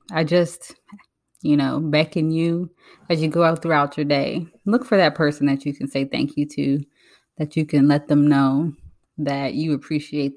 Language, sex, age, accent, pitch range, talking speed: English, female, 20-39, American, 145-160 Hz, 190 wpm